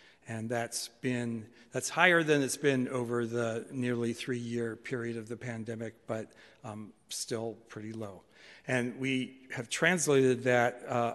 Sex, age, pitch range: male, 60-79, 115-130 Hz